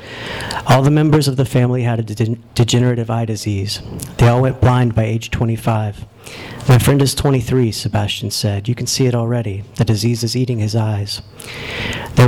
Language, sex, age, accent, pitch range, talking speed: English, male, 40-59, American, 115-125 Hz, 175 wpm